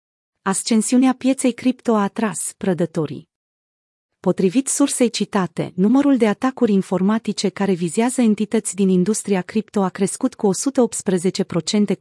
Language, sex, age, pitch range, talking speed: Romanian, female, 30-49, 175-225 Hz, 115 wpm